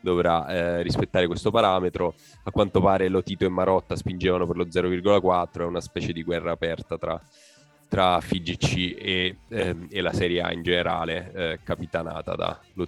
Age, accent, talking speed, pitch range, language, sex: 10-29, native, 170 wpm, 85-95 Hz, Italian, male